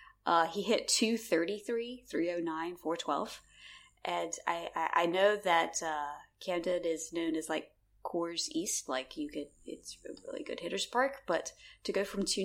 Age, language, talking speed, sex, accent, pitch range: 20-39, English, 185 wpm, female, American, 165-220 Hz